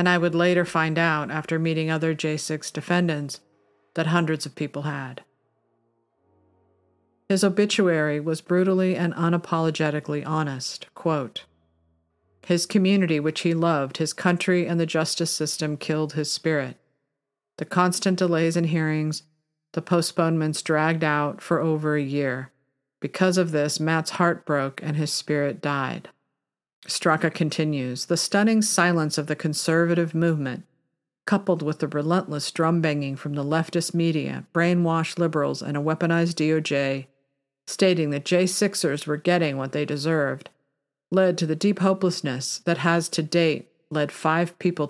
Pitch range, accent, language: 140-170 Hz, American, English